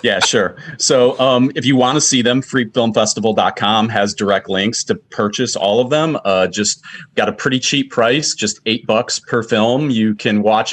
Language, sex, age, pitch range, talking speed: English, male, 30-49, 95-125 Hz, 190 wpm